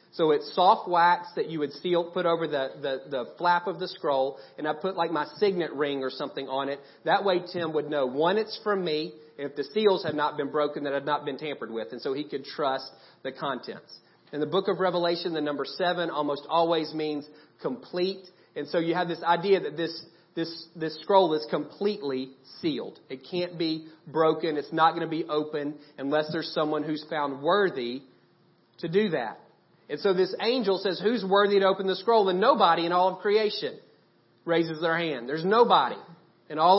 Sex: male